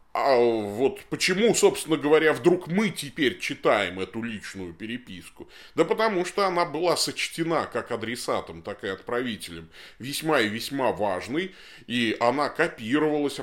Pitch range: 120-200 Hz